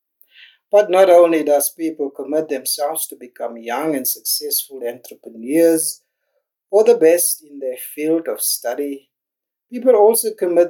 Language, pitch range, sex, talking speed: English, 145-190 Hz, male, 135 wpm